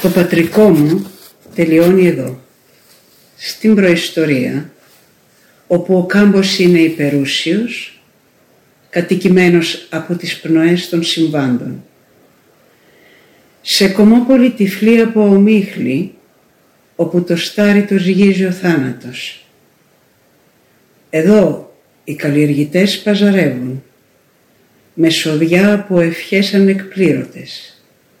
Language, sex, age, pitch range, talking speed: Greek, female, 60-79, 160-200 Hz, 80 wpm